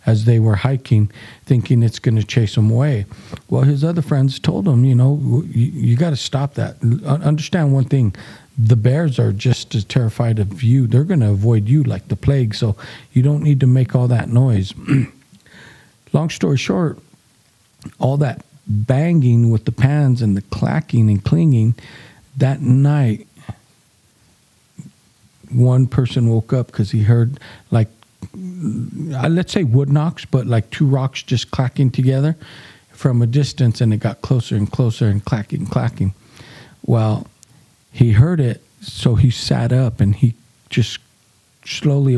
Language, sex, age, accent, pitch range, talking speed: English, male, 50-69, American, 115-145 Hz, 160 wpm